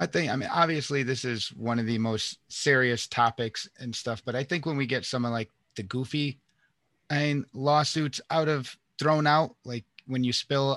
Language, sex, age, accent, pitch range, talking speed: English, male, 30-49, American, 125-155 Hz, 200 wpm